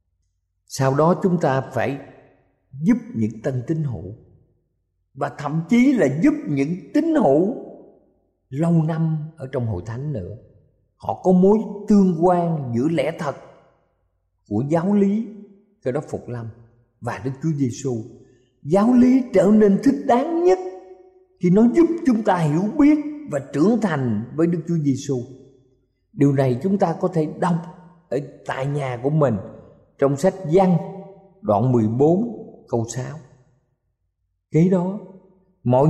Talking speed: 145 wpm